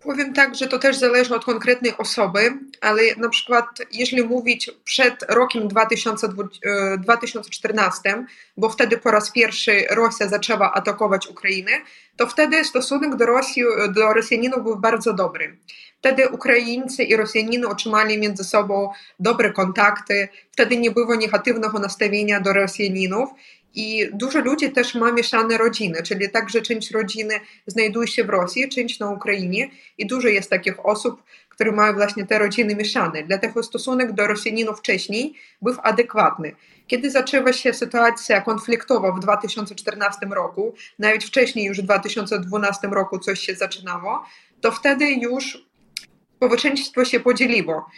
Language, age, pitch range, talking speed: Polish, 20-39, 210-245 Hz, 140 wpm